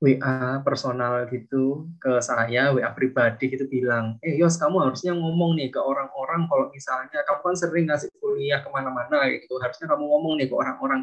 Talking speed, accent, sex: 175 wpm, native, male